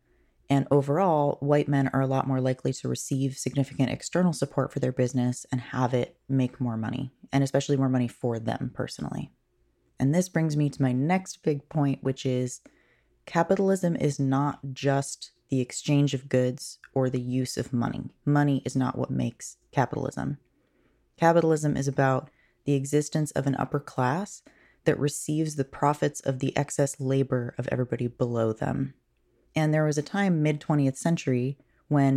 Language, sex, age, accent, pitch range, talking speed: English, female, 20-39, American, 130-150 Hz, 170 wpm